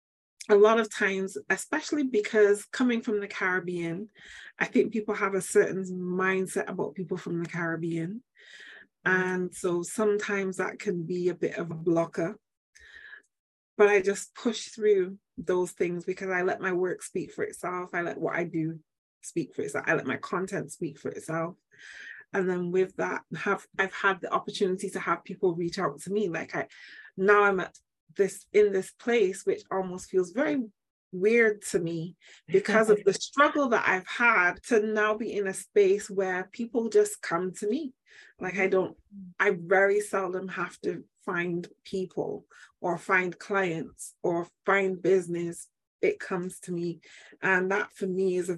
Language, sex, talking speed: English, female, 175 wpm